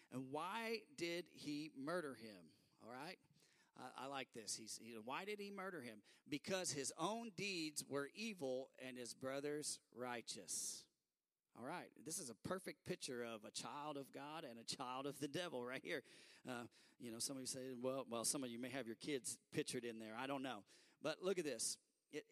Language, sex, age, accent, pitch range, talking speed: English, male, 40-59, American, 130-170 Hz, 205 wpm